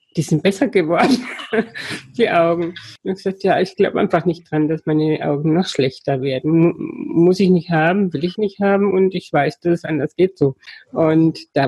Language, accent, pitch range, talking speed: German, German, 160-195 Hz, 205 wpm